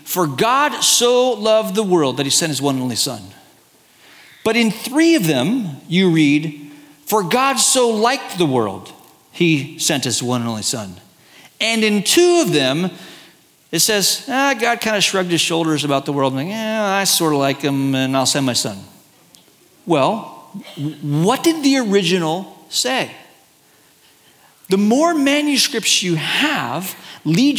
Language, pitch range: English, 155-245 Hz